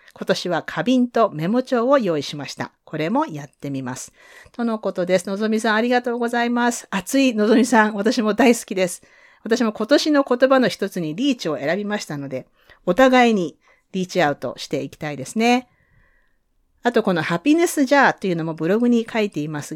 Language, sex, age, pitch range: Japanese, female, 40-59, 160-240 Hz